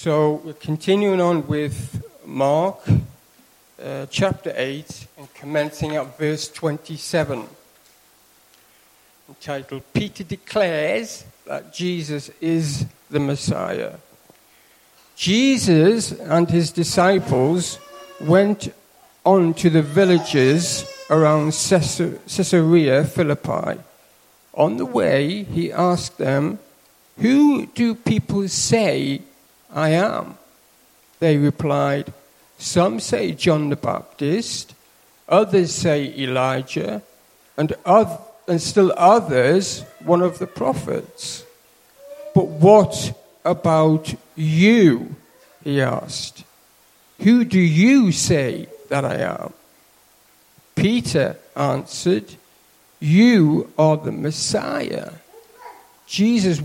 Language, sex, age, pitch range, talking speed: English, male, 60-79, 145-190 Hz, 90 wpm